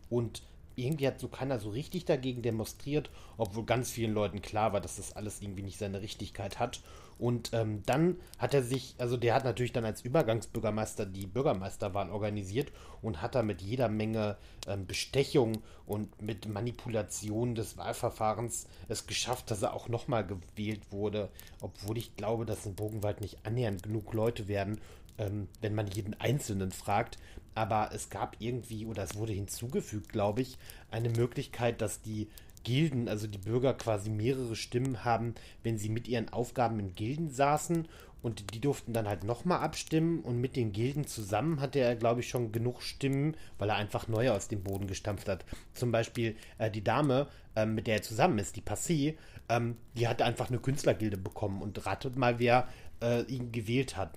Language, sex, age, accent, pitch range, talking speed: German, male, 30-49, German, 105-120 Hz, 180 wpm